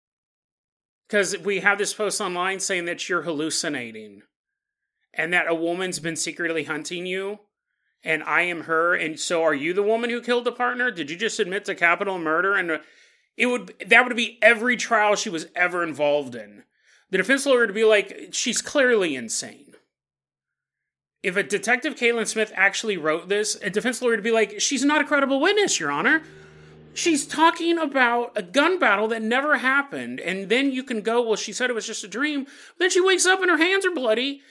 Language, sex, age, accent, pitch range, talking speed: English, male, 30-49, American, 190-265 Hz, 195 wpm